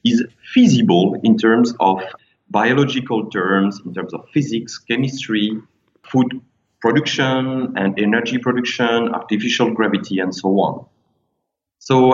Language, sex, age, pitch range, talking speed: English, male, 40-59, 100-130 Hz, 115 wpm